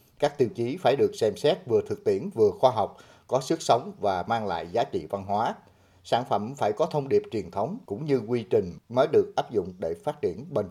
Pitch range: 110-160 Hz